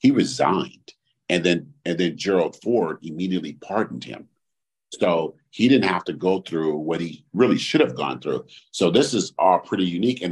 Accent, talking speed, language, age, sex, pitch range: American, 180 wpm, English, 50-69, male, 90-115 Hz